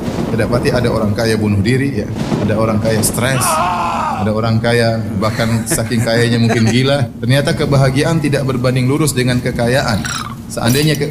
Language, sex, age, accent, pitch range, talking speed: Indonesian, male, 30-49, native, 120-175 Hz, 150 wpm